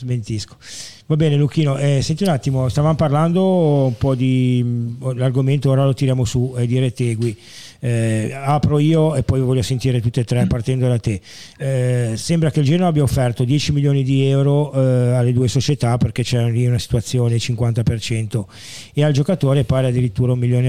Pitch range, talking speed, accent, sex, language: 115-140 Hz, 185 wpm, native, male, Italian